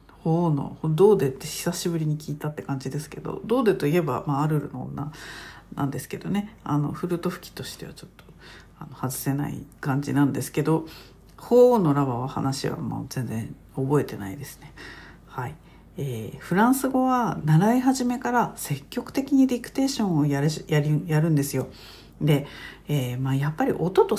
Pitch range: 145-225 Hz